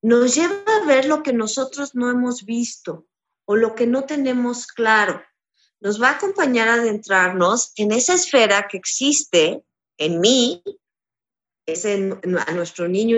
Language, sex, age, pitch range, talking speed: Spanish, female, 40-59, 185-245 Hz, 160 wpm